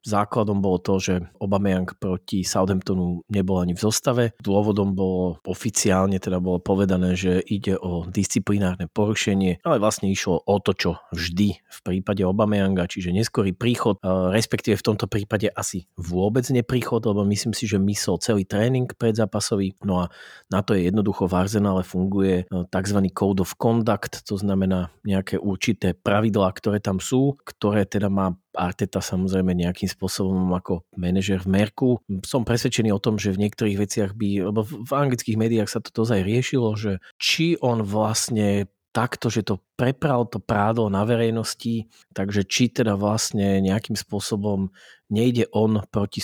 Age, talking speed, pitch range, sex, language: 40-59, 155 wpm, 95-110 Hz, male, Slovak